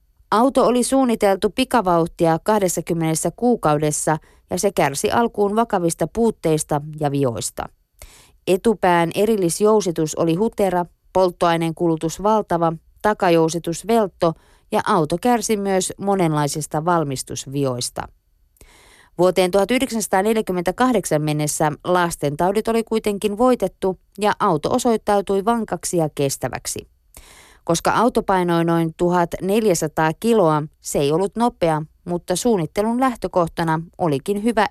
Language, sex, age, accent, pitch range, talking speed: Finnish, female, 20-39, native, 160-210 Hz, 100 wpm